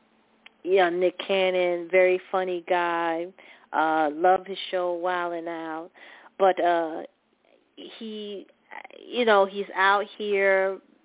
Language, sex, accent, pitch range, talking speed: English, female, American, 185-220 Hz, 115 wpm